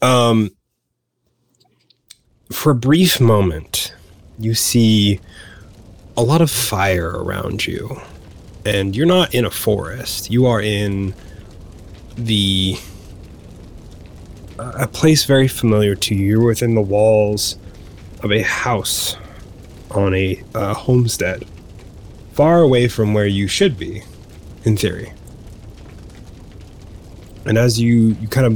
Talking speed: 115 wpm